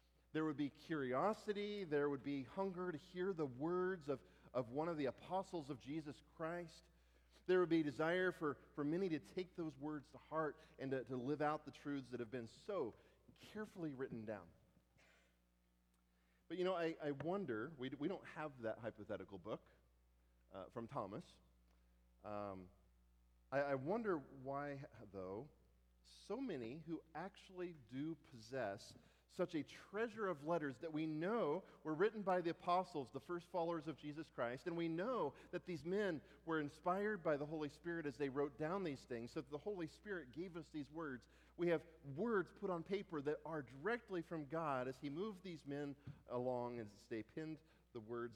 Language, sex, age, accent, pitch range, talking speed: English, male, 40-59, American, 105-165 Hz, 180 wpm